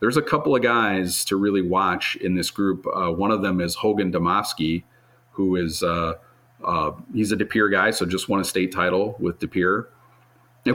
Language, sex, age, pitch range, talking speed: English, male, 40-59, 90-115 Hz, 200 wpm